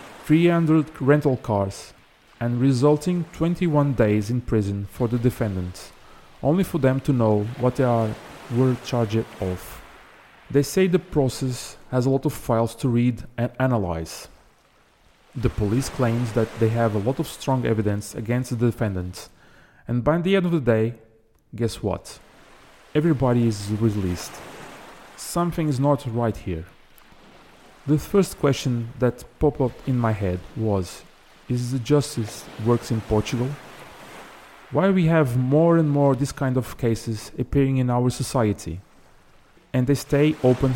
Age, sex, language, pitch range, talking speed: 30-49, male, English, 115-145 Hz, 150 wpm